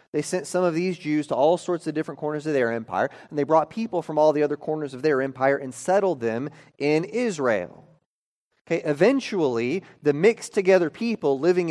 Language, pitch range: English, 140-180 Hz